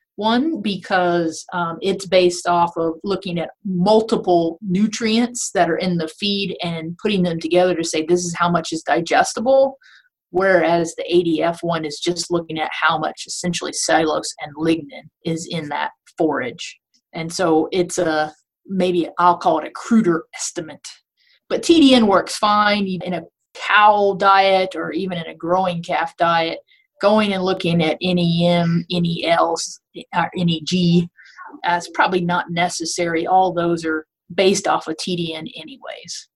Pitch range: 165-195 Hz